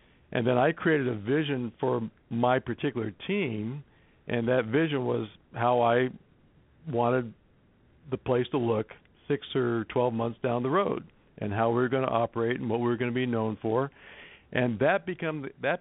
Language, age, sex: English, 50-69, male